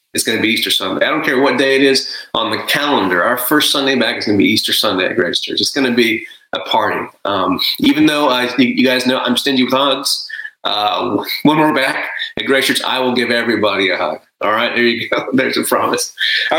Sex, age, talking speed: male, 30-49, 245 wpm